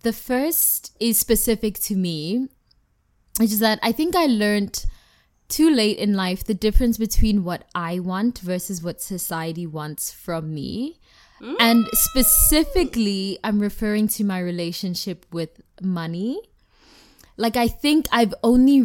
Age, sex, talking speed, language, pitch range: 20-39, female, 135 wpm, English, 170-225 Hz